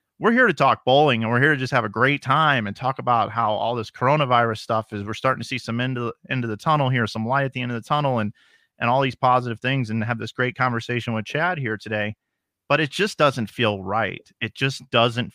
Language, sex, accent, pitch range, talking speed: English, male, American, 105-125 Hz, 260 wpm